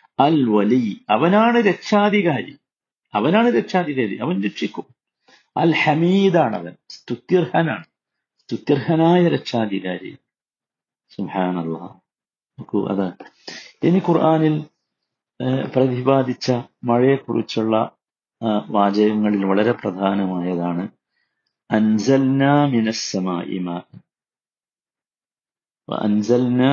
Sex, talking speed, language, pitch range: male, 60 wpm, Malayalam, 105-160 Hz